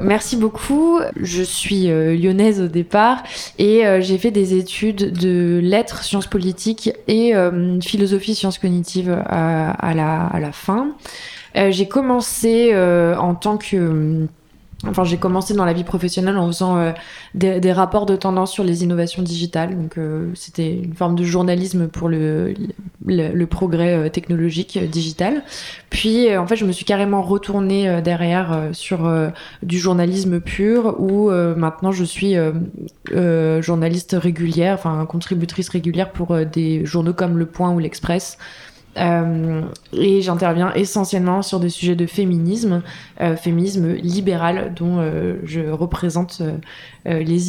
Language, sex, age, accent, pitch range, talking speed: French, female, 20-39, French, 170-195 Hz, 160 wpm